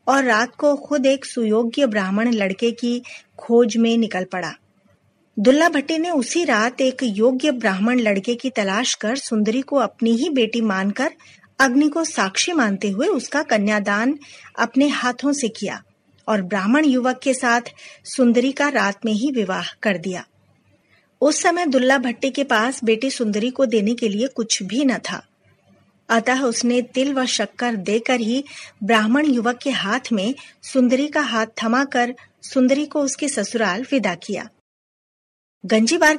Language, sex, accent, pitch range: Hindi, female, native, 220-270 Hz